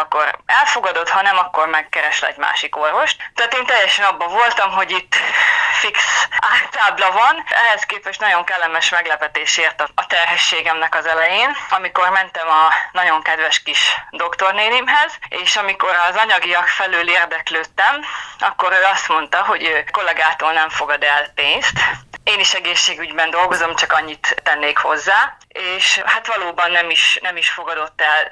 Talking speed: 145 wpm